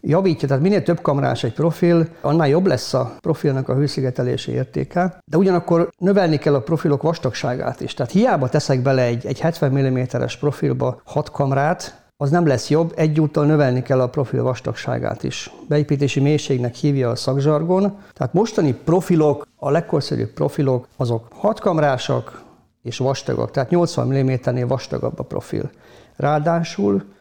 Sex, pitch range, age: male, 130-160 Hz, 50-69